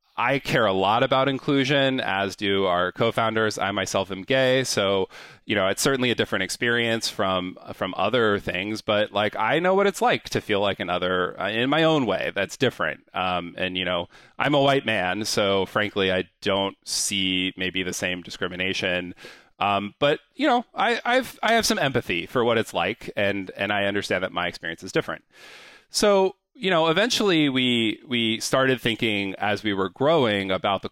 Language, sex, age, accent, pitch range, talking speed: English, male, 30-49, American, 95-135 Hz, 190 wpm